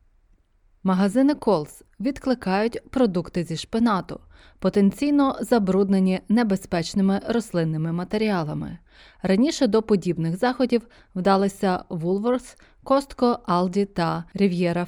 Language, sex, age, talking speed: Ukrainian, female, 20-39, 85 wpm